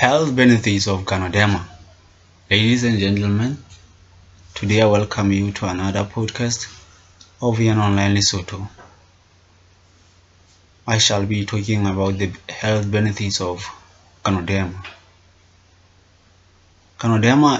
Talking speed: 100 wpm